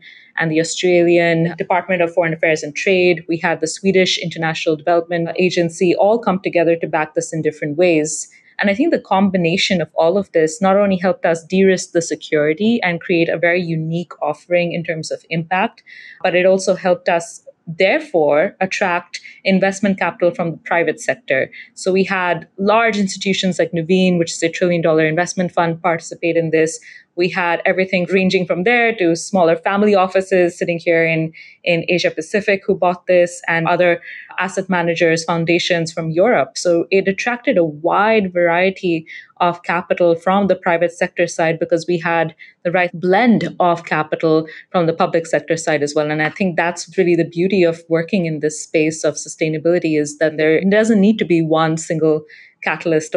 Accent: Indian